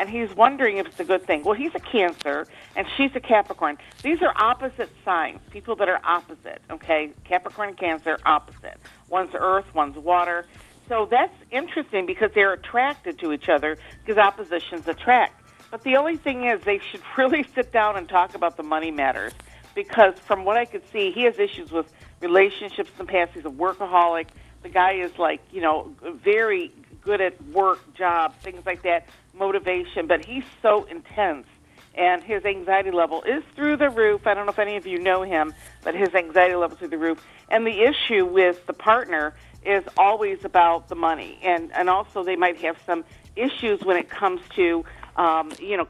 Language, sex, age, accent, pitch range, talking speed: English, female, 50-69, American, 175-240 Hz, 195 wpm